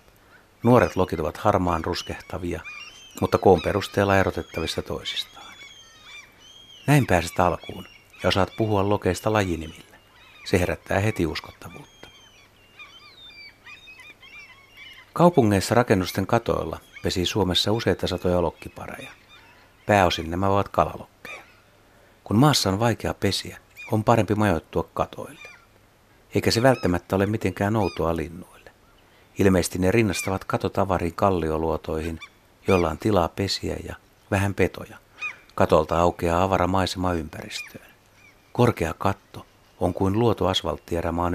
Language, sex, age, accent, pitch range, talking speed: Finnish, male, 60-79, native, 90-105 Hz, 105 wpm